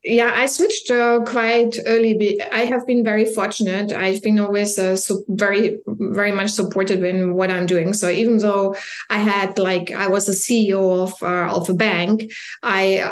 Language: English